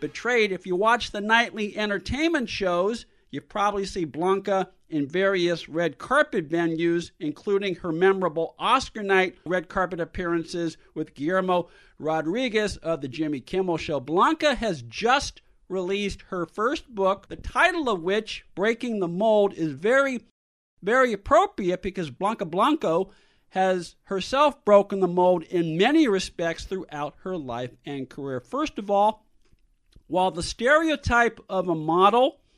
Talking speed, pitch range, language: 140 wpm, 170-215 Hz, English